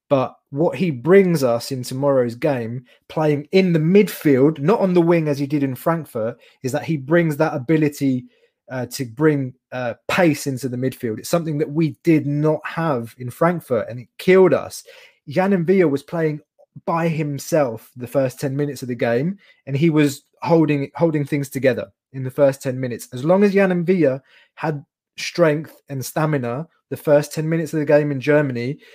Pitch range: 130-165 Hz